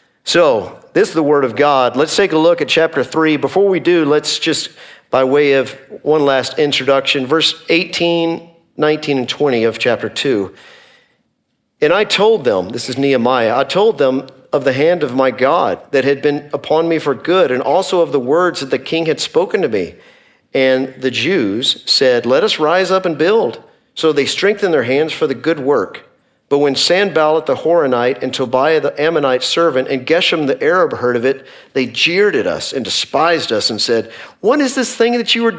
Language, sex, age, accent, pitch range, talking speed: English, male, 50-69, American, 130-170 Hz, 200 wpm